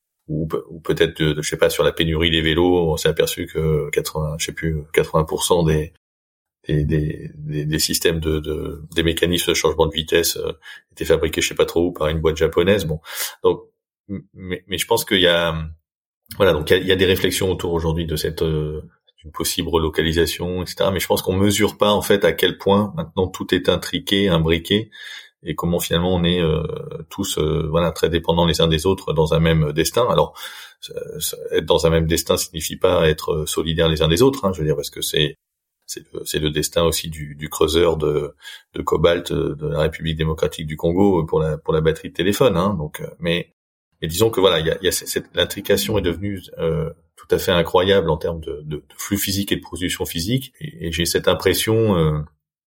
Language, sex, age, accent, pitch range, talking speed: French, male, 30-49, French, 80-100 Hz, 215 wpm